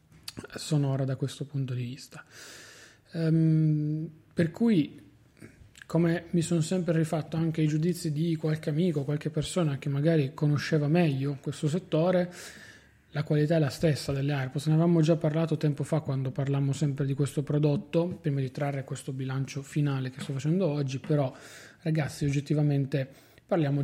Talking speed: 155 wpm